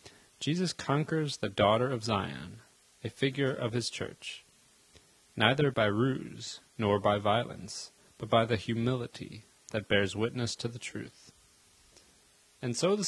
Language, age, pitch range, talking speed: English, 30-49, 110-130 Hz, 140 wpm